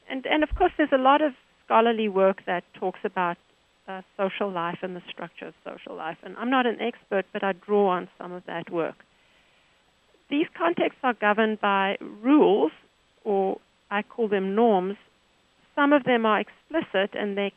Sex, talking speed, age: female, 180 wpm, 40-59